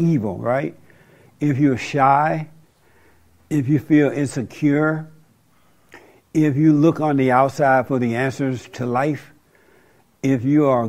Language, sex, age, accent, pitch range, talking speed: English, male, 60-79, American, 130-155 Hz, 125 wpm